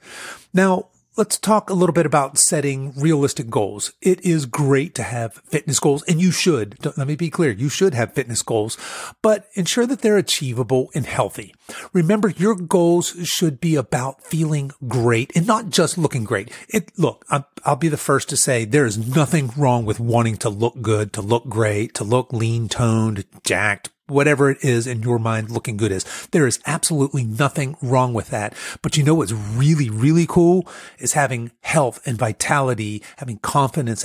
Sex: male